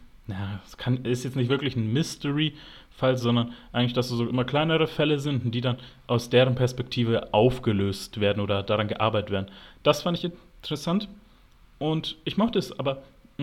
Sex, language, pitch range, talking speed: male, German, 115-140 Hz, 155 wpm